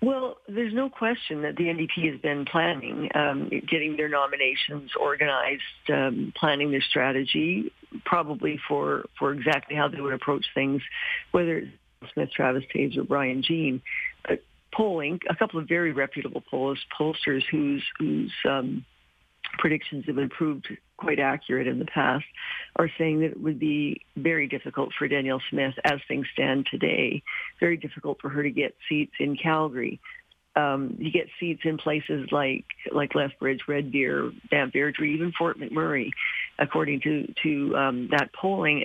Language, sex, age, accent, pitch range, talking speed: English, female, 50-69, American, 140-165 Hz, 155 wpm